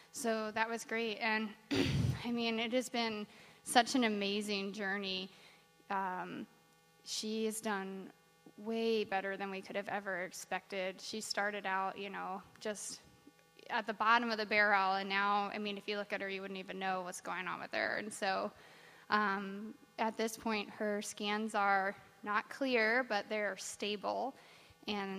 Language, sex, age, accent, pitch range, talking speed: English, female, 20-39, American, 195-215 Hz, 170 wpm